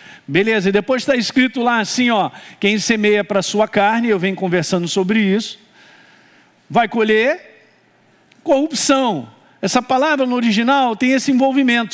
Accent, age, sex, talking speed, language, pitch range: Brazilian, 50-69, male, 145 wpm, Portuguese, 185-240 Hz